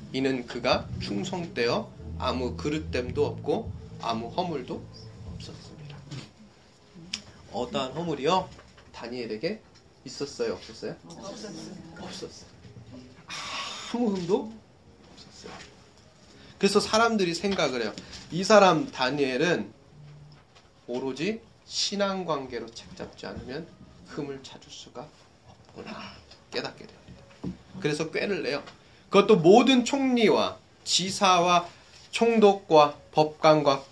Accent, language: native, Korean